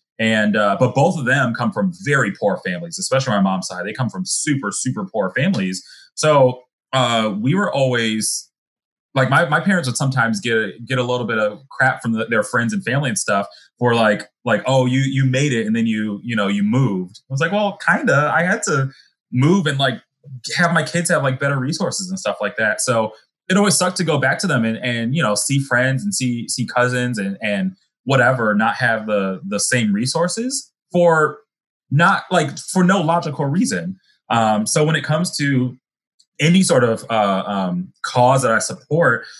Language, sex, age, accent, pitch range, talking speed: English, male, 30-49, American, 115-160 Hz, 205 wpm